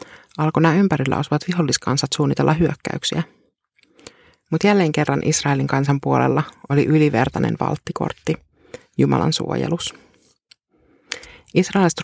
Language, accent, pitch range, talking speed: Finnish, native, 145-170 Hz, 95 wpm